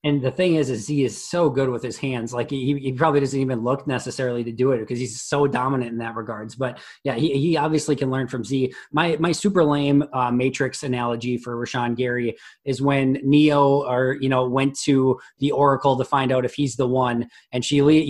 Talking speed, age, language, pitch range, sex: 230 wpm, 20-39, English, 125-145 Hz, male